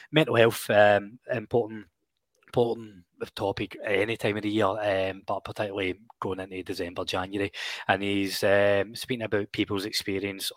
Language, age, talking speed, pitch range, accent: English, 20-39, 150 wpm, 100-115 Hz, British